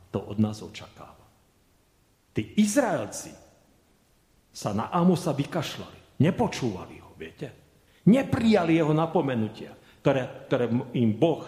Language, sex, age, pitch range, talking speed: Slovak, male, 40-59, 100-150 Hz, 100 wpm